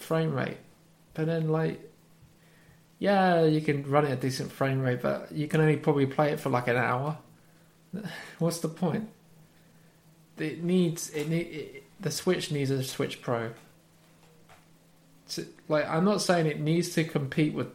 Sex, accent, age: male, British, 20-39